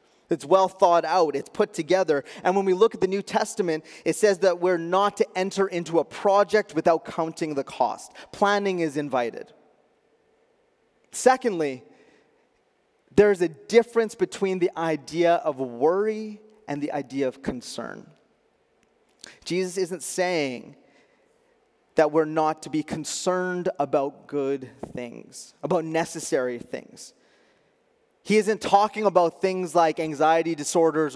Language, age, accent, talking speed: English, 30-49, American, 135 wpm